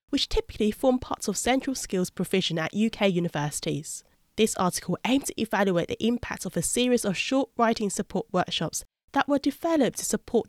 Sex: female